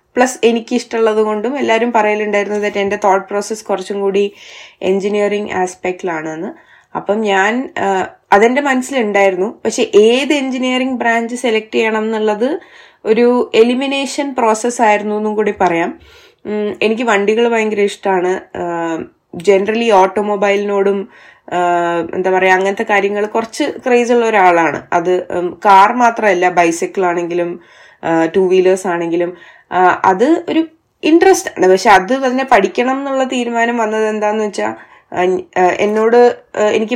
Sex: female